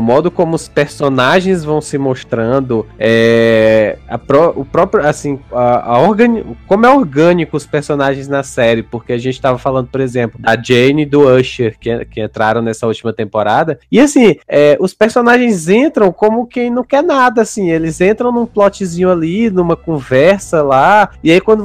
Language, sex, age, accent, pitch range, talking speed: Portuguese, male, 20-39, Brazilian, 125-180 Hz, 180 wpm